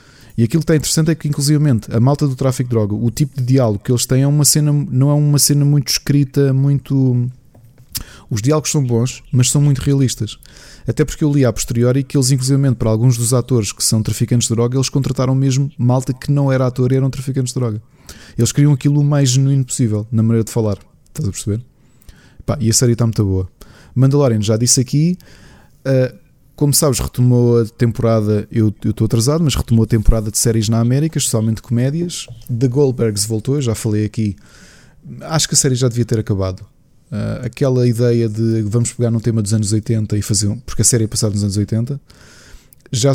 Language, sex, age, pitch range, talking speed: Portuguese, male, 20-39, 110-140 Hz, 210 wpm